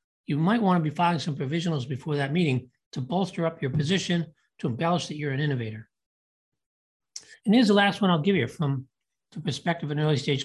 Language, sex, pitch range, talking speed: English, male, 140-185 Hz, 205 wpm